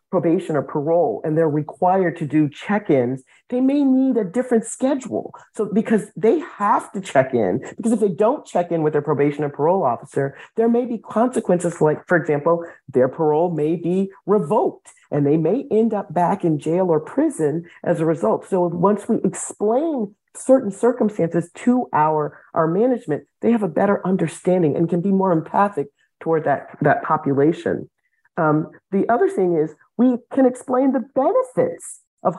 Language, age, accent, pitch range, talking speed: English, 40-59, American, 155-210 Hz, 175 wpm